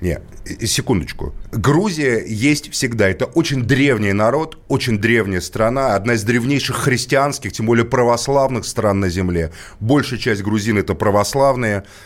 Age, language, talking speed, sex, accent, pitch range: 30-49, Russian, 135 wpm, male, native, 110-145 Hz